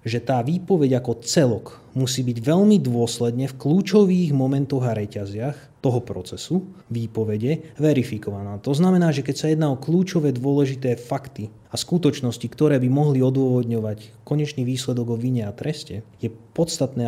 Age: 30-49